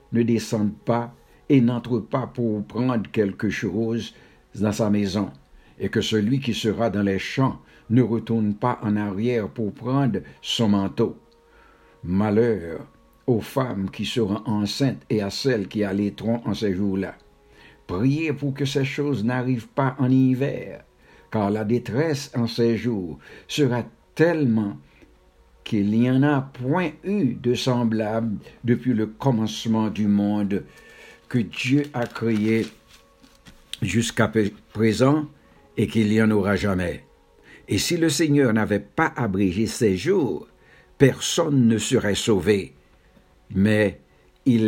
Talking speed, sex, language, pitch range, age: 135 wpm, male, English, 105-125 Hz, 60-79